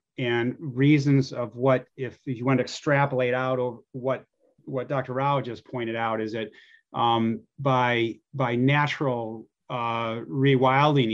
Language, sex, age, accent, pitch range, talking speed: English, male, 30-49, American, 115-130 Hz, 145 wpm